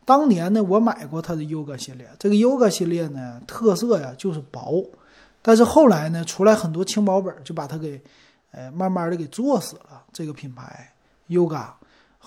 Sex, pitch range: male, 150-200 Hz